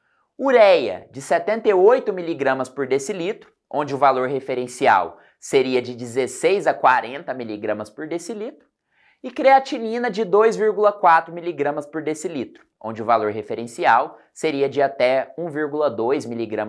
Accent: Brazilian